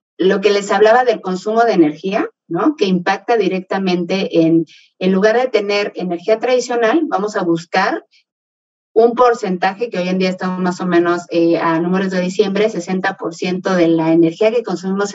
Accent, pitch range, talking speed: Mexican, 175-220 Hz, 170 wpm